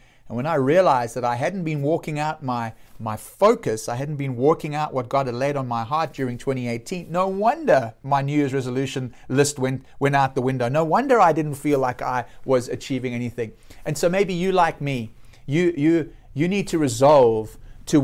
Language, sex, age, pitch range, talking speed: English, male, 30-49, 130-170 Hz, 205 wpm